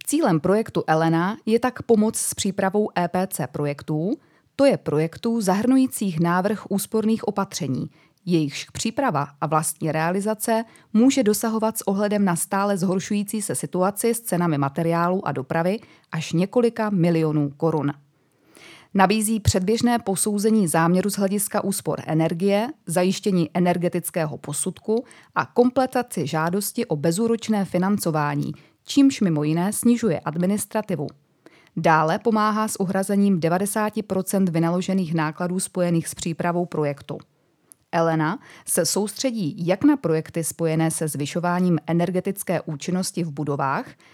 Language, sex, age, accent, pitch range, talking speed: Czech, female, 20-39, native, 160-210 Hz, 115 wpm